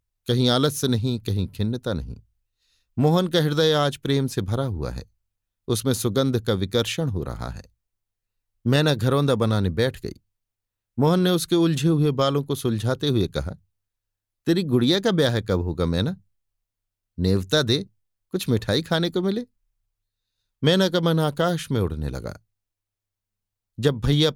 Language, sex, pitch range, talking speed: Hindi, male, 100-145 Hz, 150 wpm